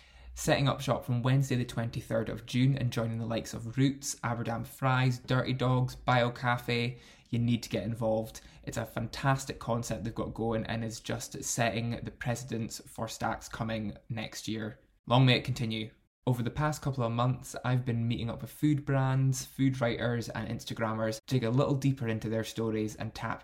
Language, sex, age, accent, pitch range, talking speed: English, male, 20-39, British, 110-130 Hz, 190 wpm